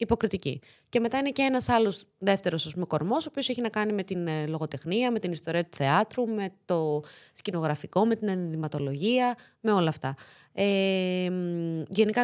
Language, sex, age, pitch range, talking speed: Greek, female, 20-39, 165-225 Hz, 160 wpm